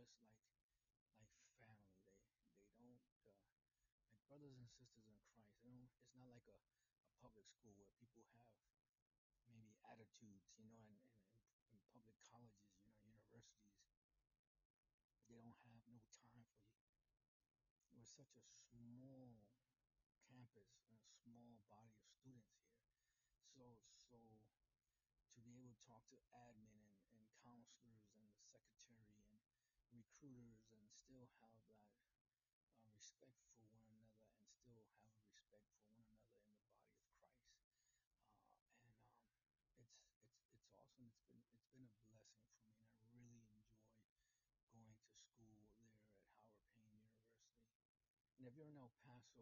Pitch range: 110-120 Hz